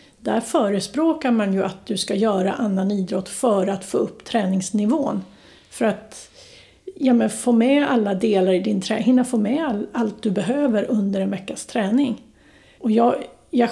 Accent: native